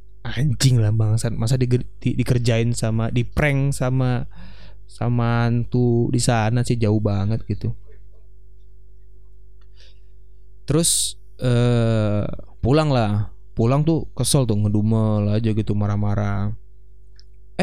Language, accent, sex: Indonesian, native, male